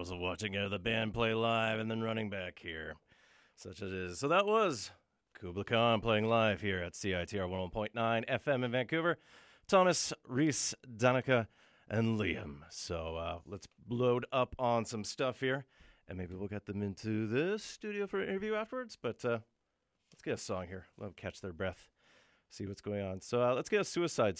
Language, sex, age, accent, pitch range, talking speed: English, male, 40-59, American, 95-125 Hz, 190 wpm